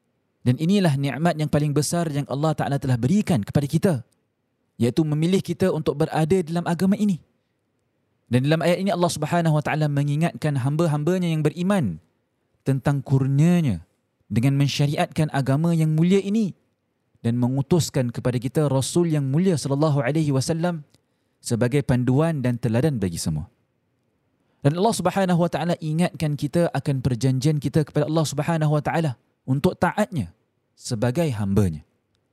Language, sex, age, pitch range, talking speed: Malay, male, 20-39, 120-165 Hz, 140 wpm